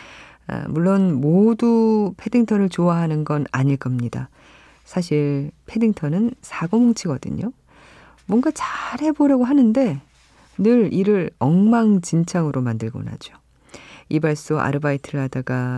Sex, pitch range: female, 135-190 Hz